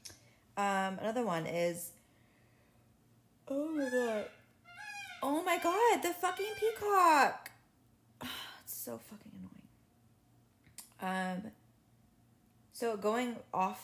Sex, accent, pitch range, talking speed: female, American, 120-195 Hz, 95 wpm